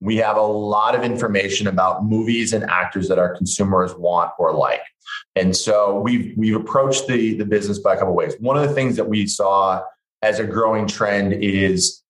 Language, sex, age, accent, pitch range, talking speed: English, male, 30-49, American, 95-115 Hz, 205 wpm